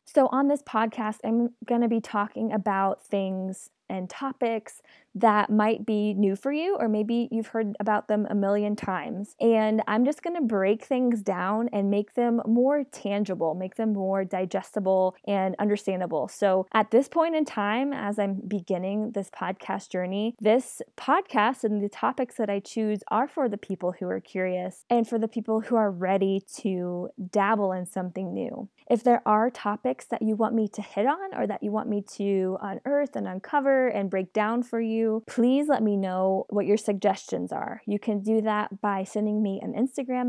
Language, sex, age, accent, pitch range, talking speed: English, female, 20-39, American, 195-230 Hz, 190 wpm